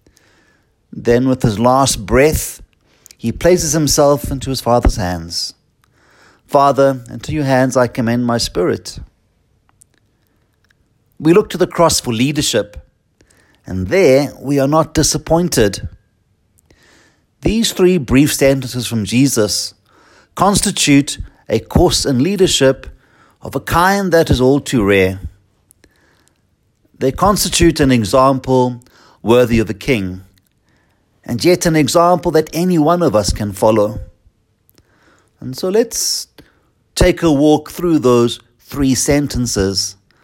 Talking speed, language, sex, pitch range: 120 wpm, English, male, 105-150 Hz